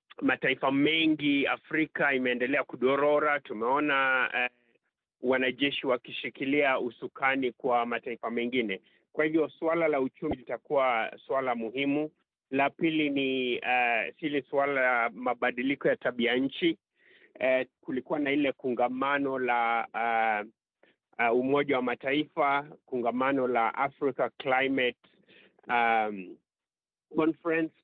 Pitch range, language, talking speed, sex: 125-155 Hz, Swahili, 105 wpm, male